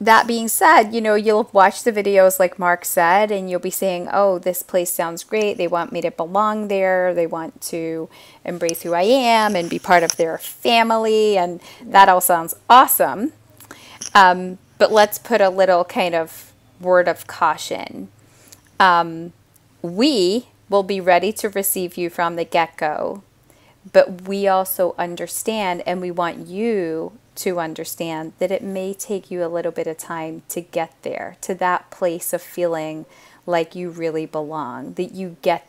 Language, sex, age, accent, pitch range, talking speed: English, female, 30-49, American, 170-200 Hz, 175 wpm